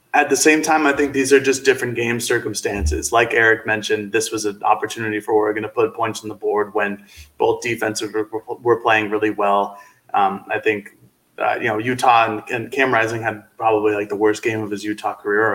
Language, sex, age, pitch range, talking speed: English, male, 20-39, 105-140 Hz, 220 wpm